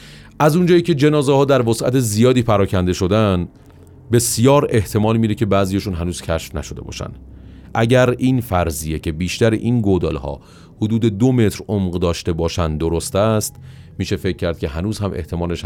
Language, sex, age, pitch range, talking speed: Persian, male, 30-49, 90-125 Hz, 160 wpm